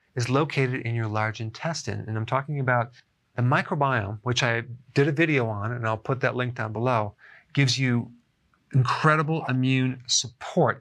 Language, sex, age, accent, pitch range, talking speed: English, male, 40-59, American, 120-150 Hz, 165 wpm